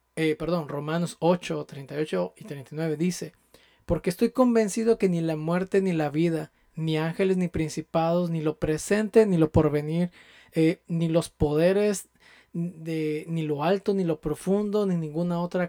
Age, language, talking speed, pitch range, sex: 20-39, Spanish, 160 wpm, 160-190 Hz, male